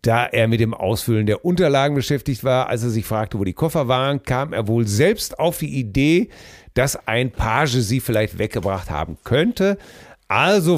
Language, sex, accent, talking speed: German, male, German, 185 wpm